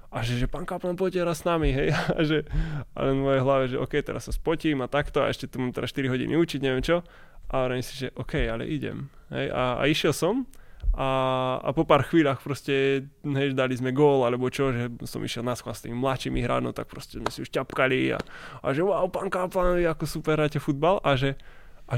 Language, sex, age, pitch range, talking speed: Slovak, male, 20-39, 120-145 Hz, 225 wpm